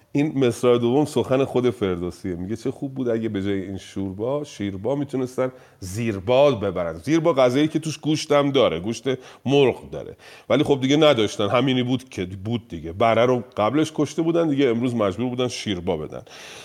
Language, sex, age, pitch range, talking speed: Persian, male, 40-59, 110-155 Hz, 175 wpm